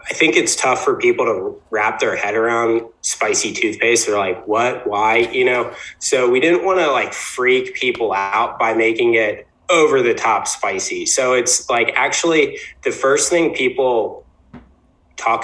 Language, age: English, 20-39